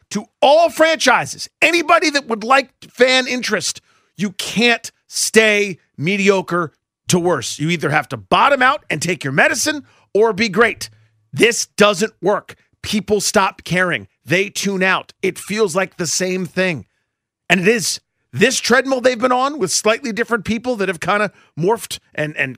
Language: English